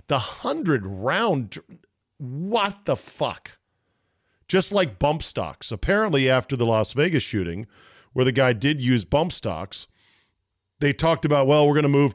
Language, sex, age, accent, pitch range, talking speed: English, male, 40-59, American, 100-140 Hz, 155 wpm